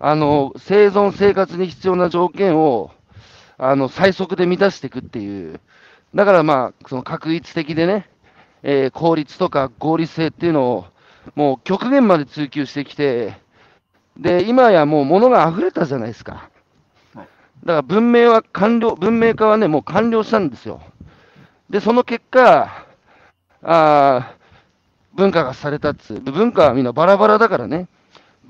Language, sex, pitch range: Japanese, male, 145-195 Hz